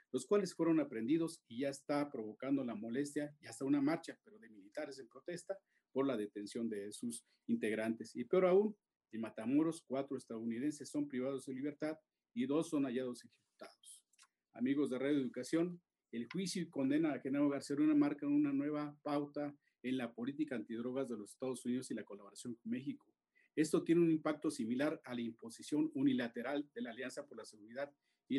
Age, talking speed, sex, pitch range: 40-59, 180 wpm, male, 125-165 Hz